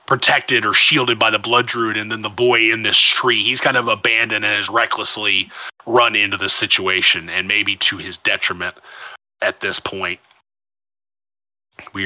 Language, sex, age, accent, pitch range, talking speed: English, male, 30-49, American, 115-165 Hz, 170 wpm